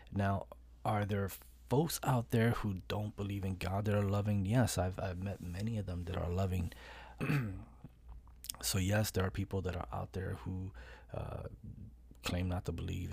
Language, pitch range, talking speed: English, 90-100 Hz, 180 wpm